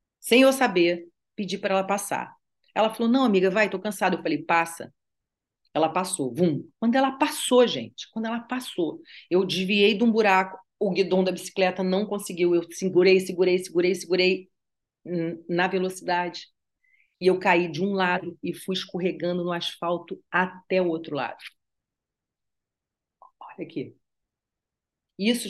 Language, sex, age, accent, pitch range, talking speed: Portuguese, female, 40-59, Brazilian, 185-250 Hz, 150 wpm